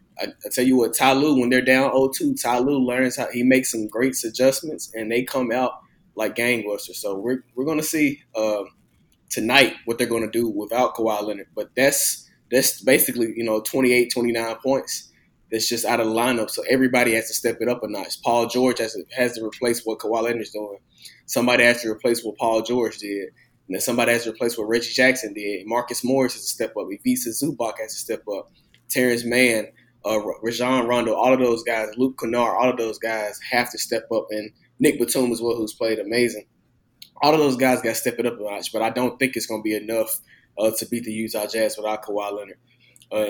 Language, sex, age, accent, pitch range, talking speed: English, male, 20-39, American, 110-125 Hz, 225 wpm